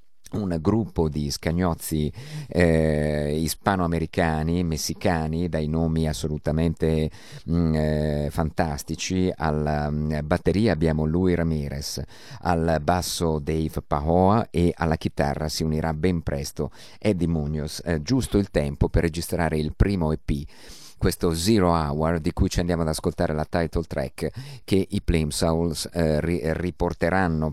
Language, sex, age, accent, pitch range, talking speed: Italian, male, 50-69, native, 75-90 Hz, 130 wpm